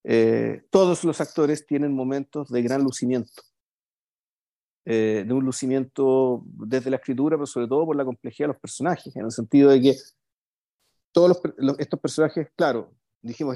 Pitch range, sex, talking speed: 120-160 Hz, male, 165 wpm